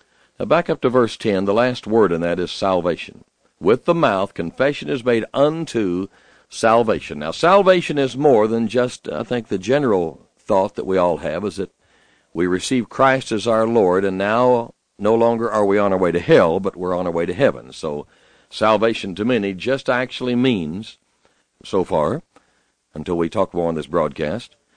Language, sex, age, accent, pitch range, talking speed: English, male, 60-79, American, 95-135 Hz, 185 wpm